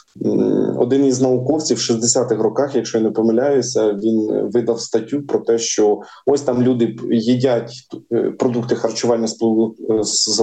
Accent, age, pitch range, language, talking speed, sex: native, 20-39, 110-135 Hz, Ukrainian, 130 wpm, male